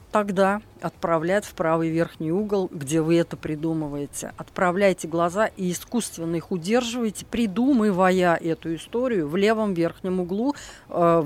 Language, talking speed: Russian, 130 wpm